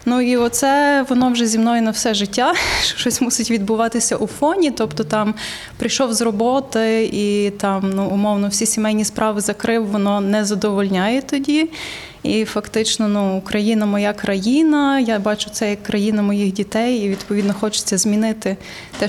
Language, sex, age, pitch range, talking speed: Ukrainian, female, 20-39, 210-245 Hz, 155 wpm